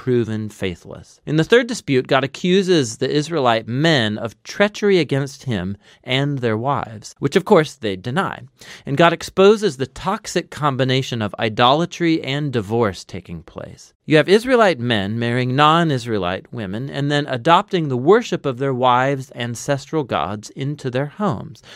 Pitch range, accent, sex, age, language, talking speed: 115-165 Hz, American, male, 40-59, English, 150 wpm